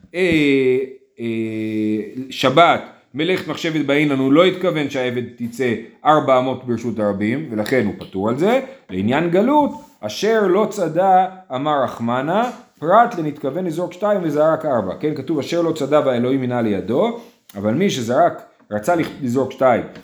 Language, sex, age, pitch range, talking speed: Hebrew, male, 40-59, 130-210 Hz, 140 wpm